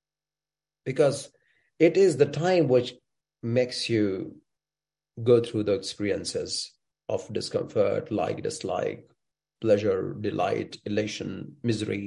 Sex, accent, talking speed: male, Indian, 100 wpm